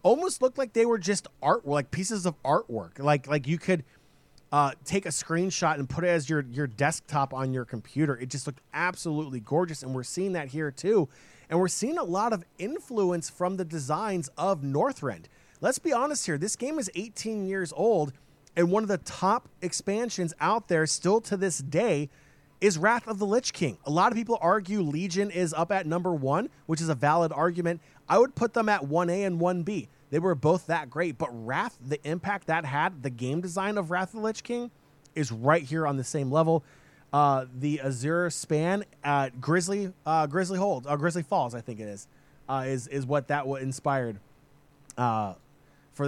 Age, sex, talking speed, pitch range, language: 30-49, male, 200 wpm, 145-185 Hz, English